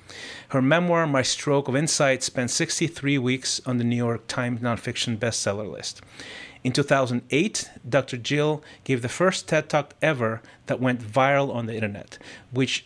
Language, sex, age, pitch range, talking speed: English, male, 30-49, 120-145 Hz, 160 wpm